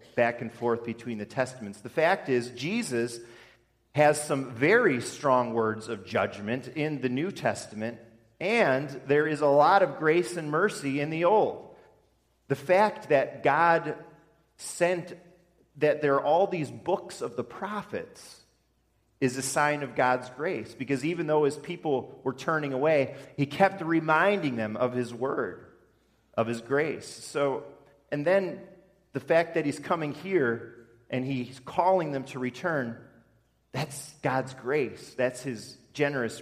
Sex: male